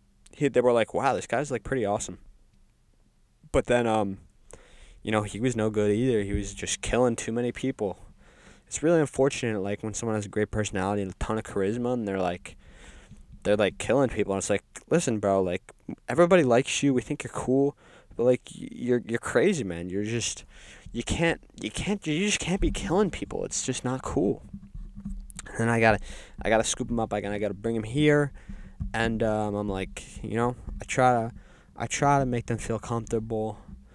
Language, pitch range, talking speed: English, 100-125 Hz, 200 wpm